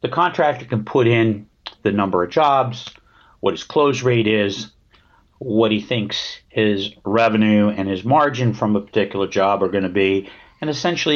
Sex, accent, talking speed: male, American, 170 wpm